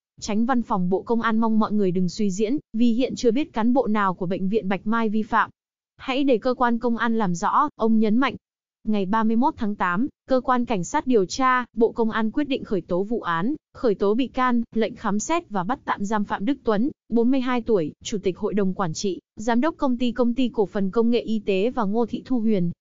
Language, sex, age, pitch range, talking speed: Vietnamese, female, 20-39, 205-245 Hz, 250 wpm